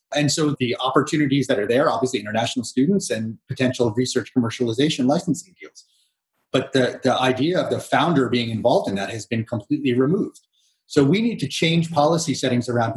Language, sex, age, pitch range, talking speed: English, male, 30-49, 125-150 Hz, 180 wpm